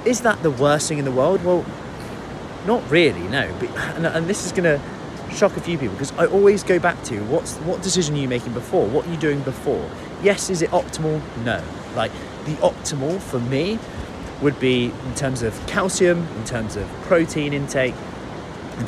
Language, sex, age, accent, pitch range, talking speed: English, male, 30-49, British, 115-155 Hz, 195 wpm